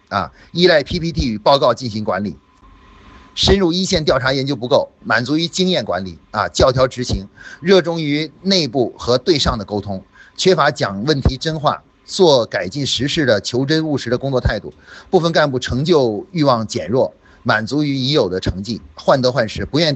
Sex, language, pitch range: male, Chinese, 115-155 Hz